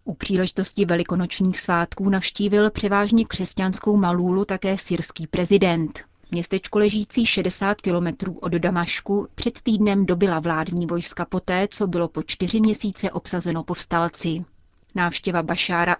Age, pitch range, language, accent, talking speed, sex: 30-49, 170-195 Hz, Czech, native, 120 wpm, female